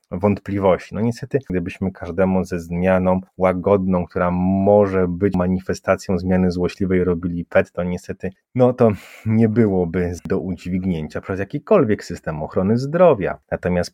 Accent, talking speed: native, 130 wpm